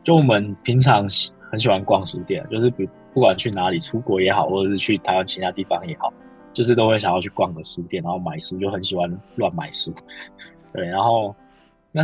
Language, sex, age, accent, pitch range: Chinese, male, 20-39, native, 90-115 Hz